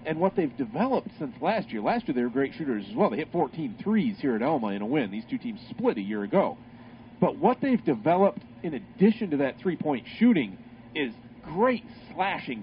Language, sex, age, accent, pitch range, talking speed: English, male, 40-59, American, 145-225 Hz, 215 wpm